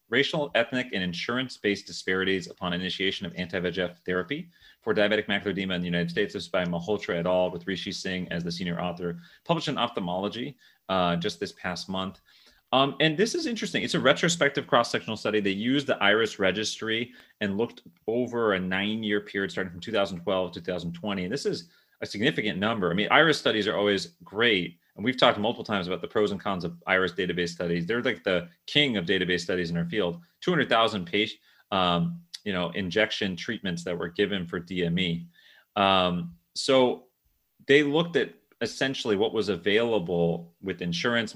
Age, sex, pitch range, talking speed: 30-49, male, 90-115 Hz, 180 wpm